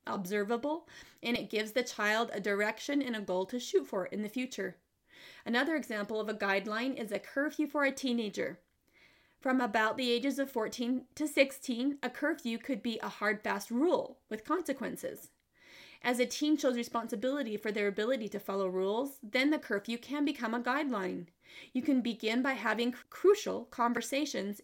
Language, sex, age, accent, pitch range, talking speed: English, female, 30-49, American, 210-275 Hz, 175 wpm